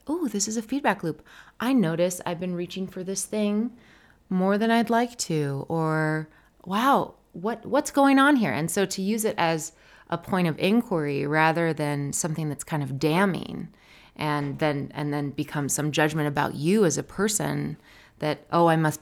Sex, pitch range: female, 150-190 Hz